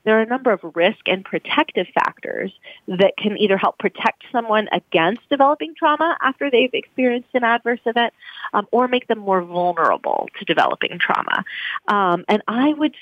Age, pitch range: 40-59, 185-235 Hz